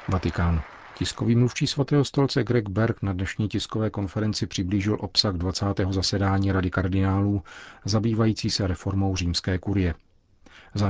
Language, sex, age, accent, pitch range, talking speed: Czech, male, 40-59, native, 90-105 Hz, 125 wpm